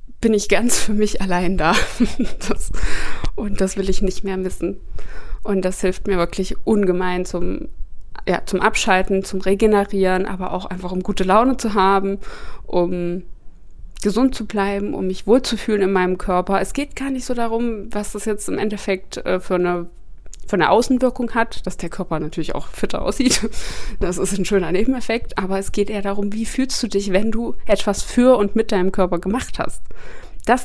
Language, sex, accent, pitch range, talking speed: German, female, German, 185-220 Hz, 180 wpm